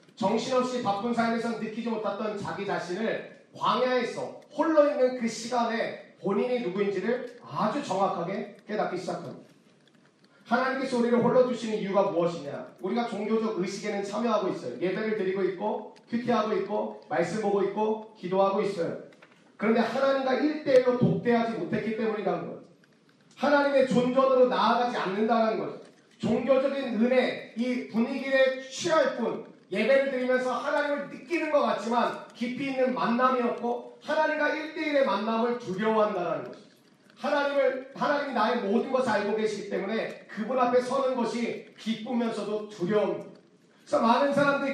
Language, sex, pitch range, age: Korean, male, 210-260 Hz, 40-59